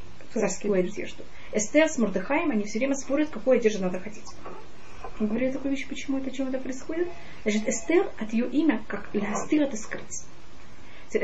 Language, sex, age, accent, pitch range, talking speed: Russian, female, 20-39, native, 210-275 Hz, 165 wpm